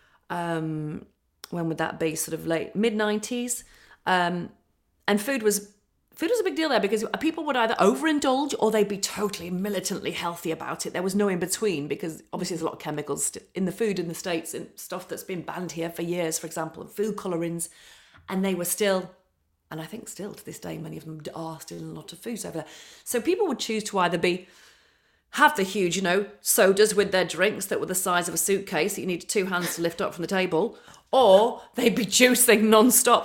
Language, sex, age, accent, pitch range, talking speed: English, female, 40-59, British, 170-215 Hz, 230 wpm